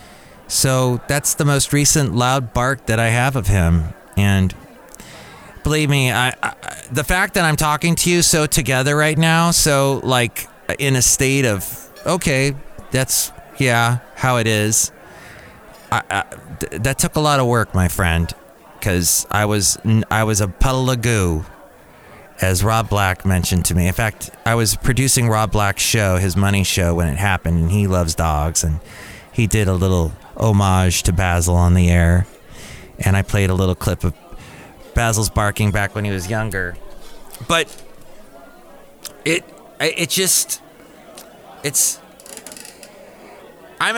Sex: male